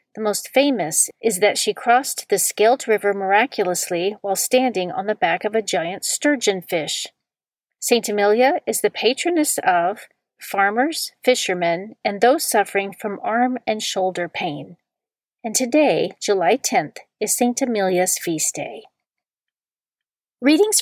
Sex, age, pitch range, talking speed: female, 40-59, 190-245 Hz, 135 wpm